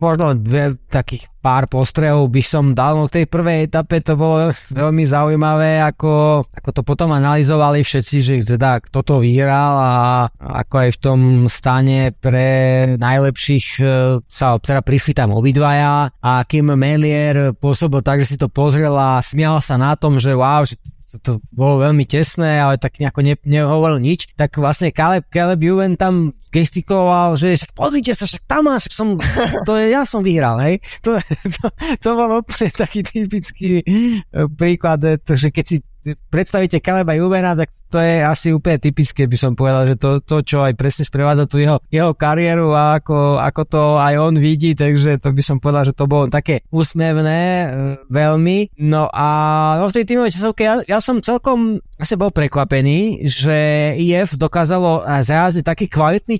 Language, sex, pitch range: Slovak, male, 140-170 Hz